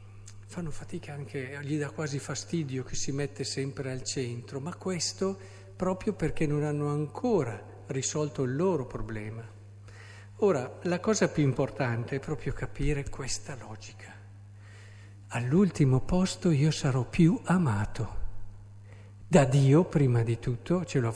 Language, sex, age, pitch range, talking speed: Italian, male, 50-69, 100-160 Hz, 135 wpm